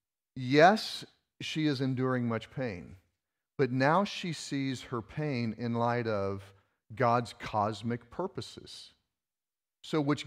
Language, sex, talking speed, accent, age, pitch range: English, male, 115 wpm, American, 40-59, 100-135 Hz